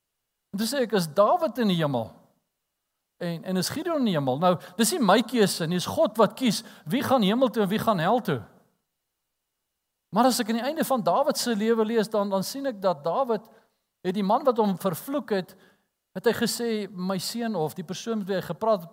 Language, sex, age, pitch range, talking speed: English, male, 50-69, 175-225 Hz, 210 wpm